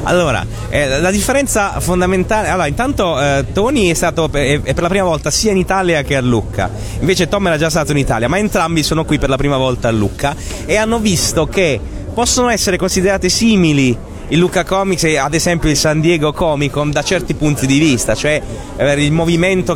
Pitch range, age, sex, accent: 145-190 Hz, 30-49, male, native